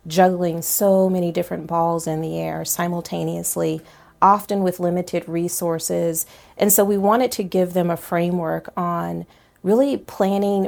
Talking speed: 140 wpm